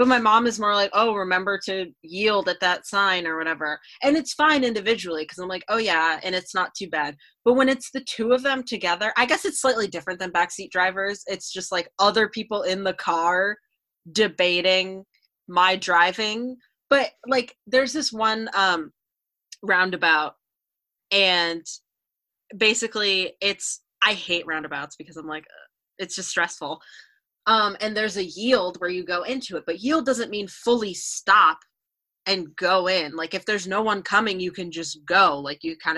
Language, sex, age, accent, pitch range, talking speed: English, female, 20-39, American, 175-220 Hz, 180 wpm